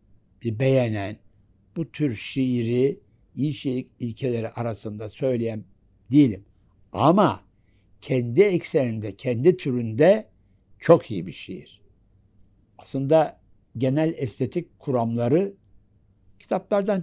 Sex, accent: male, native